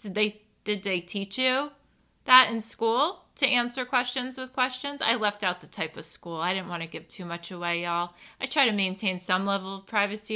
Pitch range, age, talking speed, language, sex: 185-240 Hz, 20-39, 220 wpm, English, female